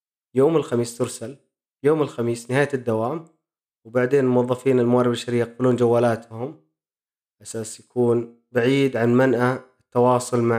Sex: male